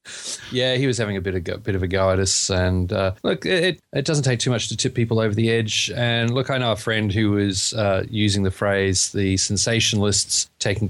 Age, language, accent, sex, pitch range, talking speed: 30-49, English, Australian, male, 100-125 Hz, 240 wpm